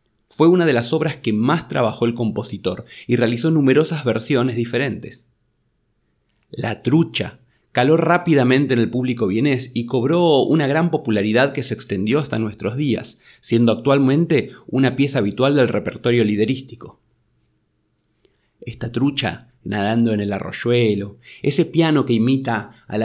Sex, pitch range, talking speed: male, 110-140 Hz, 140 wpm